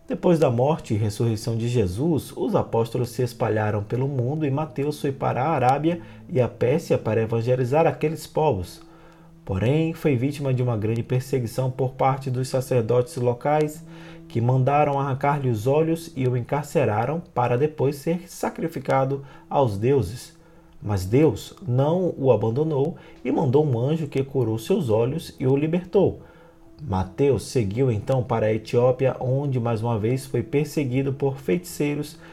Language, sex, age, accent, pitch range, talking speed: Portuguese, male, 20-39, Brazilian, 120-155 Hz, 150 wpm